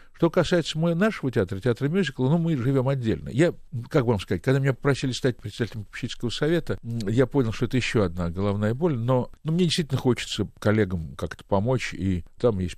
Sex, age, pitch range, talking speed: male, 60-79, 95-135 Hz, 190 wpm